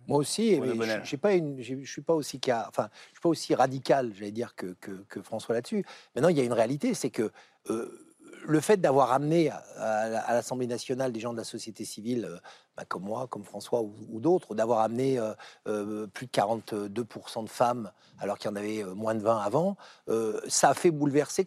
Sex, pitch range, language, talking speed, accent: male, 115-160 Hz, French, 195 wpm, French